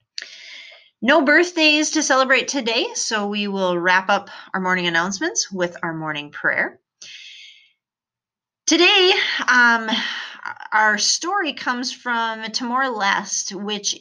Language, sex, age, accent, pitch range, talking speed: English, female, 30-49, American, 175-230 Hz, 110 wpm